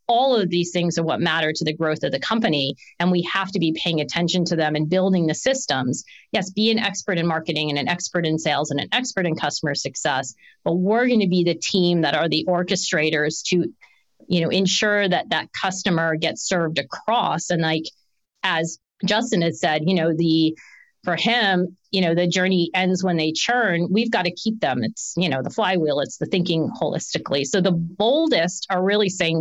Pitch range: 165-220 Hz